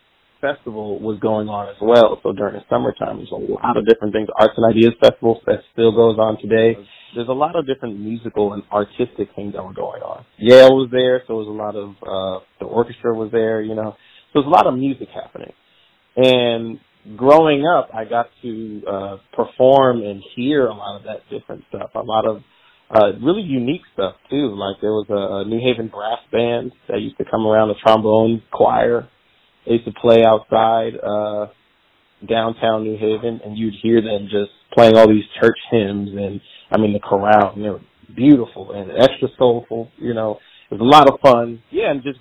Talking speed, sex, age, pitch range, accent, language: 205 wpm, male, 30-49, 105-120 Hz, American, English